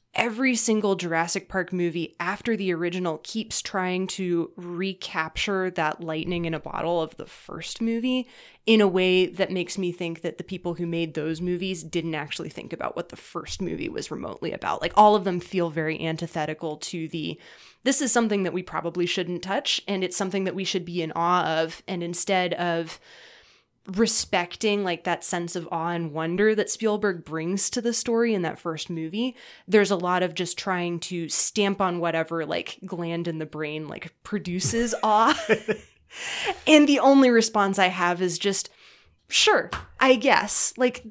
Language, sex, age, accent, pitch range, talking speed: English, female, 20-39, American, 170-215 Hz, 180 wpm